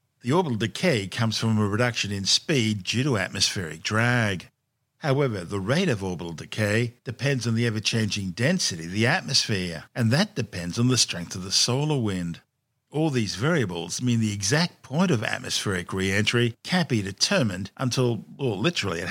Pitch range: 105-130 Hz